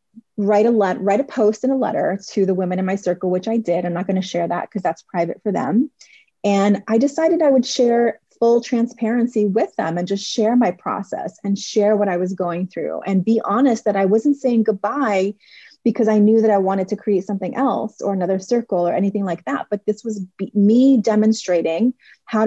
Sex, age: female, 30-49